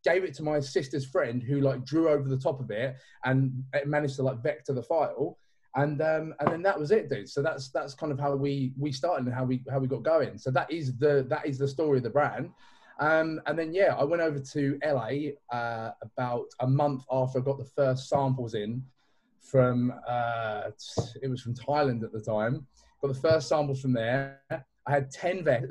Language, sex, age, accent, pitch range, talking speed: English, male, 20-39, British, 125-145 Hz, 220 wpm